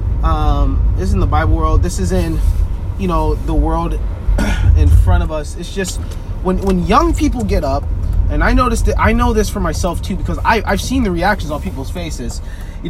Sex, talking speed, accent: male, 215 wpm, American